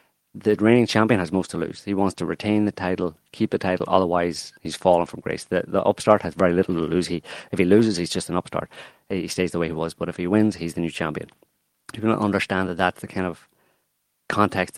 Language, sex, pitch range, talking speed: English, male, 90-110 Hz, 250 wpm